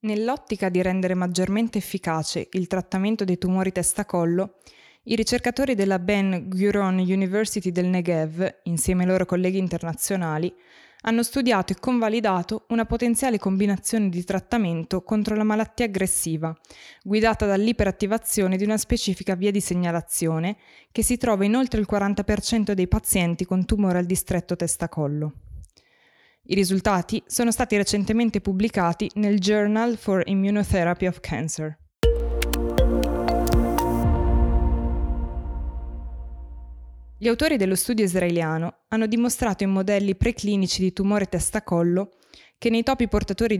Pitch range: 175-215 Hz